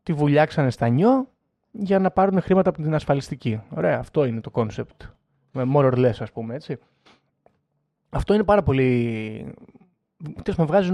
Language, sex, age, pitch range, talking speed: Greek, male, 20-39, 125-175 Hz, 160 wpm